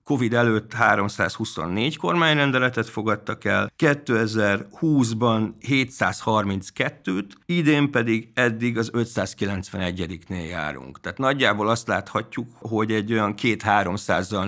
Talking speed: 95 wpm